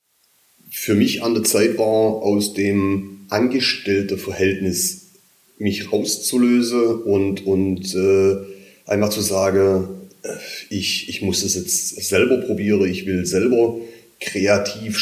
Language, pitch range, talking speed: German, 95-120 Hz, 115 wpm